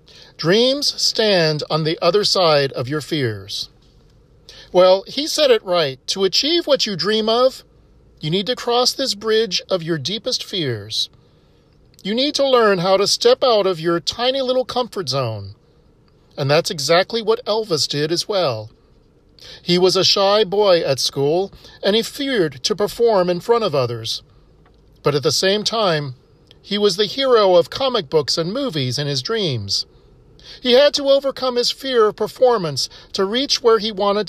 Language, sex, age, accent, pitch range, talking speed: English, male, 40-59, American, 155-240 Hz, 170 wpm